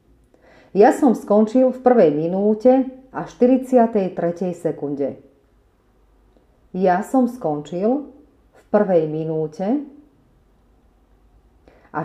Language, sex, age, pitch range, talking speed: Slovak, female, 40-59, 155-225 Hz, 80 wpm